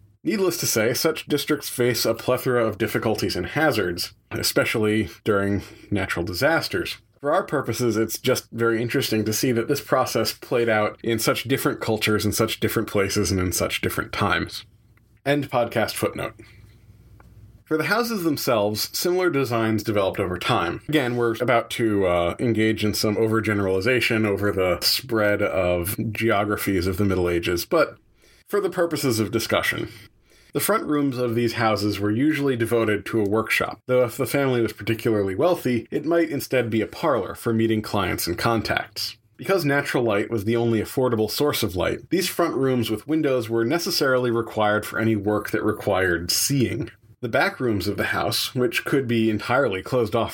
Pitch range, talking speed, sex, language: 105-130 Hz, 175 wpm, male, English